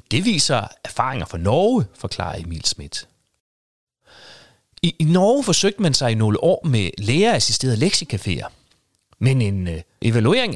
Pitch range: 100-160 Hz